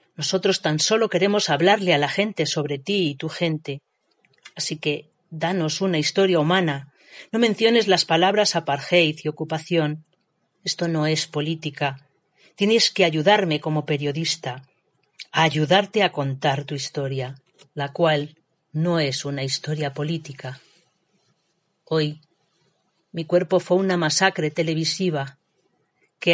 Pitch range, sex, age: 150-185 Hz, female, 40-59